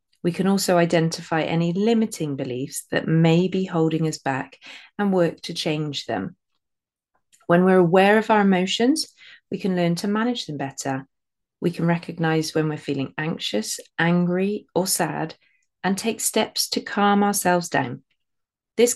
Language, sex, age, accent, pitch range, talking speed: English, female, 30-49, British, 160-205 Hz, 155 wpm